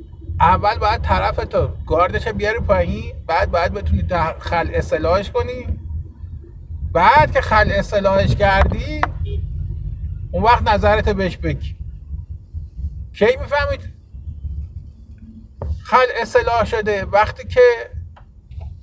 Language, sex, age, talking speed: Persian, male, 50-69, 90 wpm